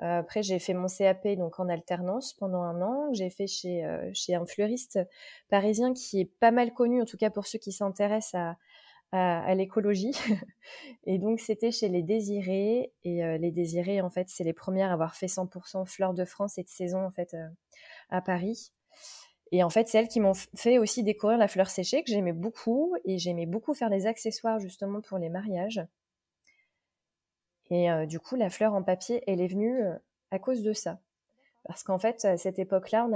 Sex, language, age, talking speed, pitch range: female, French, 20-39, 200 wpm, 180-220 Hz